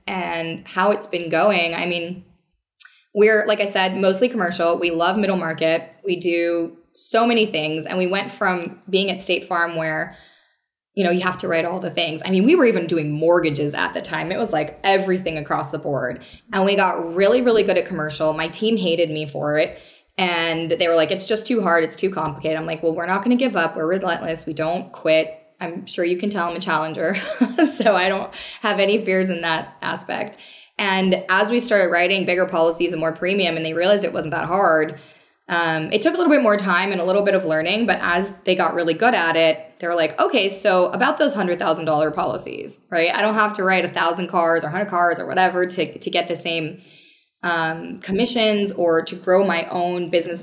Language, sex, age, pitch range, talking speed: English, female, 20-39, 165-195 Hz, 225 wpm